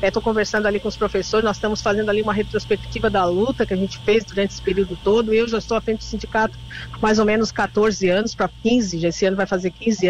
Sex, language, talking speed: female, Portuguese, 255 wpm